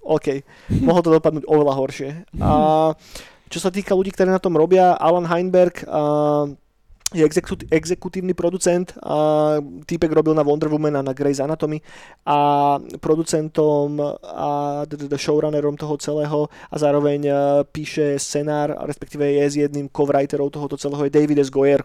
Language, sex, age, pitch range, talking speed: Slovak, male, 20-39, 140-160 Hz, 155 wpm